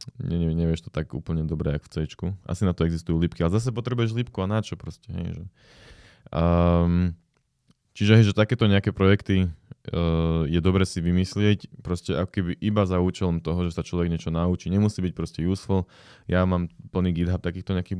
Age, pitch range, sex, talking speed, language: 20-39, 80-95 Hz, male, 185 wpm, Slovak